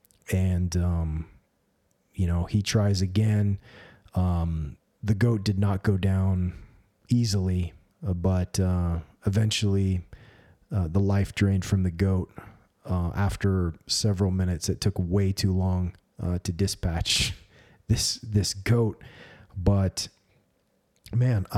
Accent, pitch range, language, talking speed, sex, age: American, 90-105 Hz, English, 120 wpm, male, 30-49